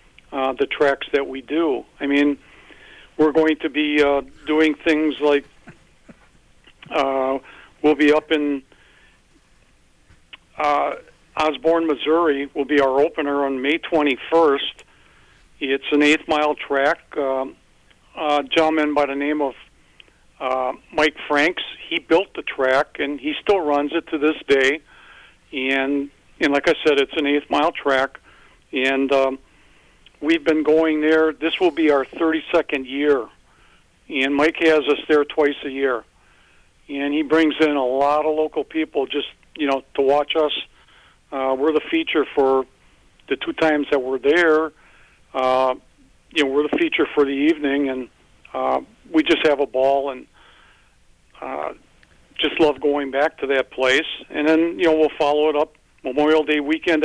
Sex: male